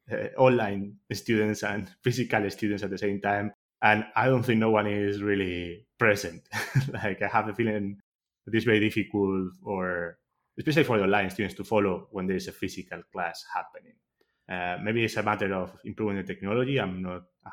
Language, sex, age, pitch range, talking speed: English, male, 20-39, 95-105 Hz, 185 wpm